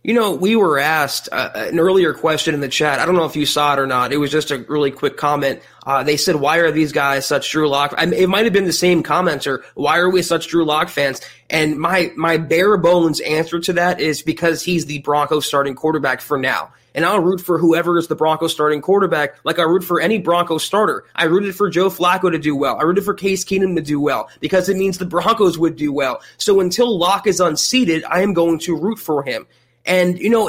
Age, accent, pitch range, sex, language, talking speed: 20-39, American, 150-190 Hz, male, English, 245 wpm